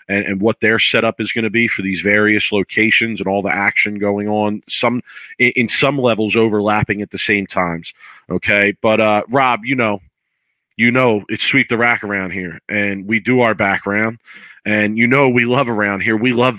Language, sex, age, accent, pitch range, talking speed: English, male, 40-59, American, 105-120 Hz, 205 wpm